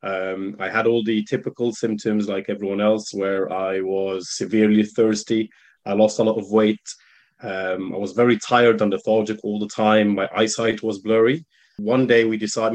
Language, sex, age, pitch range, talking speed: English, male, 20-39, 105-120 Hz, 185 wpm